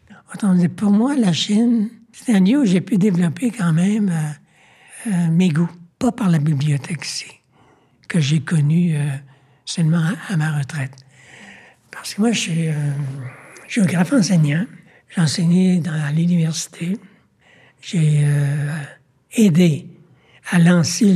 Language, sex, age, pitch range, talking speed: French, male, 60-79, 155-195 Hz, 135 wpm